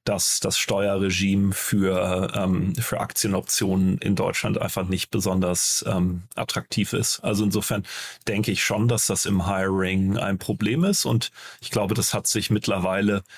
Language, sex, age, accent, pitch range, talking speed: German, male, 40-59, German, 95-110 Hz, 150 wpm